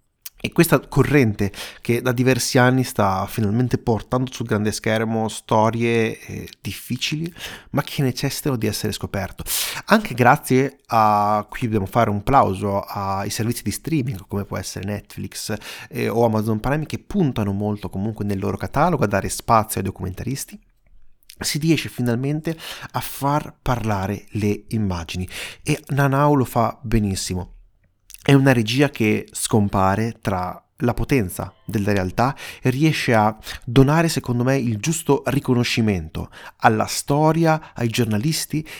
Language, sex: Italian, male